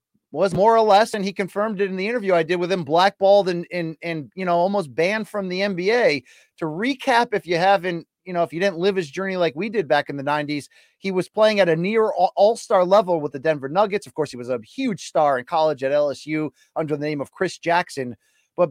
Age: 30-49